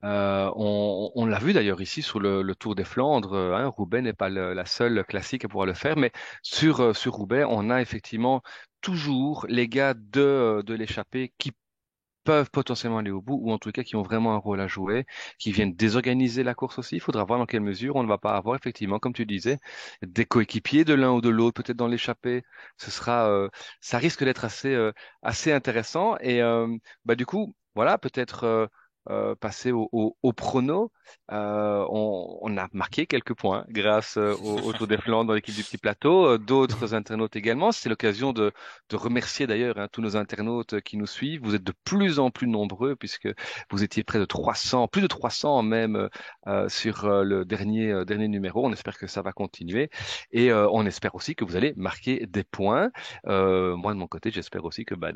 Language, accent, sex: French, French, male